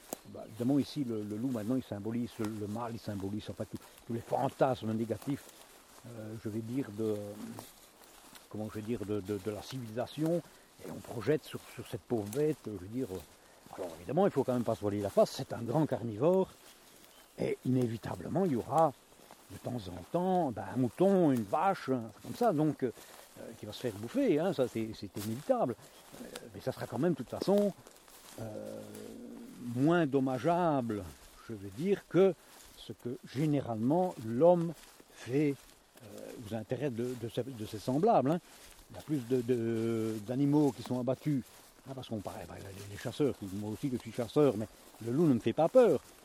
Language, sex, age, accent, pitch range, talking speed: French, male, 60-79, French, 110-150 Hz, 200 wpm